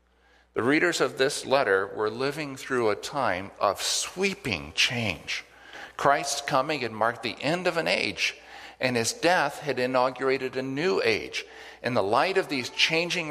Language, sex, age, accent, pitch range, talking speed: English, male, 50-69, American, 95-140 Hz, 160 wpm